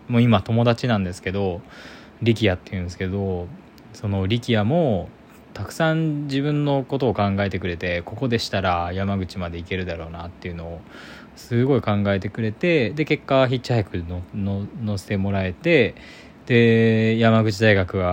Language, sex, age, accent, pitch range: Japanese, male, 20-39, native, 90-115 Hz